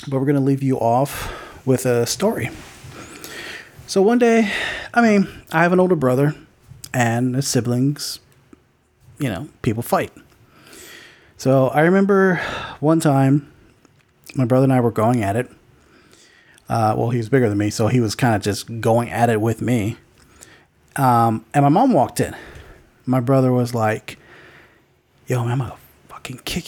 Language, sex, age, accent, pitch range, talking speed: English, male, 30-49, American, 115-145 Hz, 165 wpm